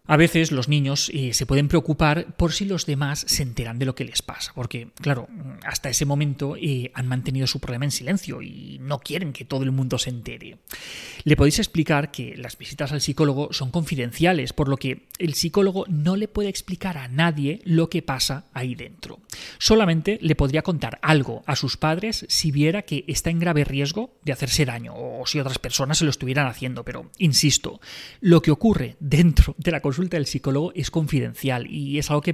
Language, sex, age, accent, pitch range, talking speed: Spanish, male, 30-49, Spanish, 130-165 Hz, 200 wpm